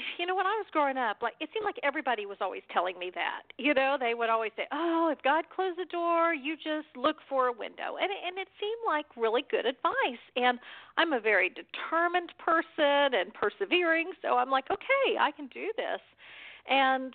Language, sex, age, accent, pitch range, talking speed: English, female, 50-69, American, 230-325 Hz, 210 wpm